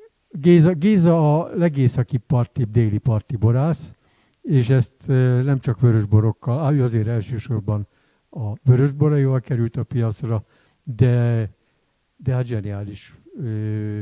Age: 60-79